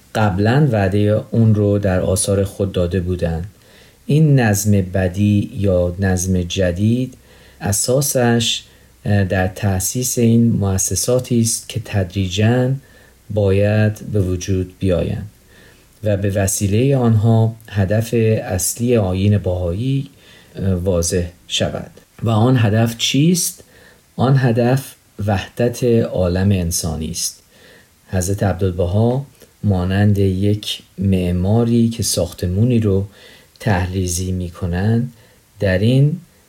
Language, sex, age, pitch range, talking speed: Persian, male, 40-59, 95-115 Hz, 95 wpm